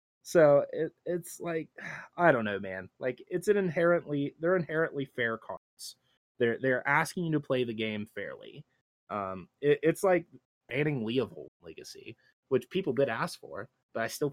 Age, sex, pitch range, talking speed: 20-39, male, 105-140 Hz, 170 wpm